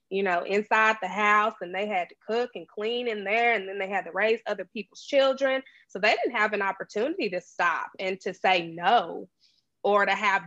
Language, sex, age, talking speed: English, female, 20-39, 220 wpm